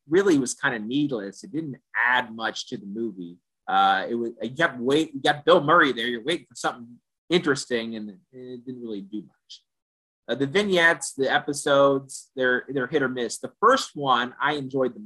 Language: English